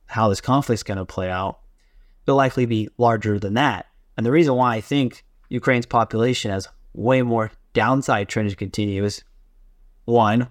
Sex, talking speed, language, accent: male, 175 wpm, English, American